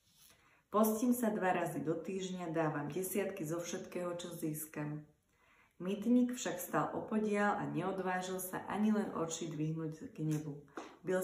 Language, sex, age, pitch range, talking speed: Slovak, female, 30-49, 160-195 Hz, 140 wpm